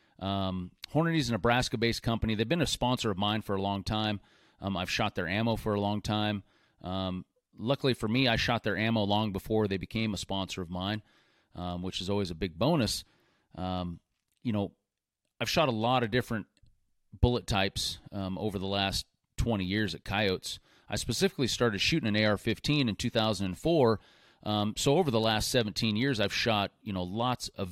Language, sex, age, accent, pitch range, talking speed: English, male, 30-49, American, 95-115 Hz, 190 wpm